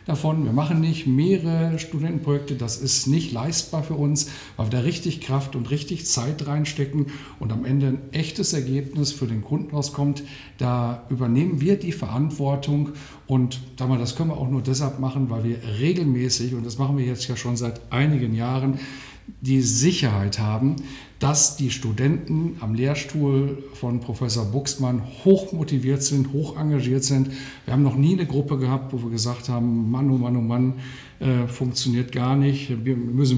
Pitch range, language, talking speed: 125-150 Hz, German, 170 wpm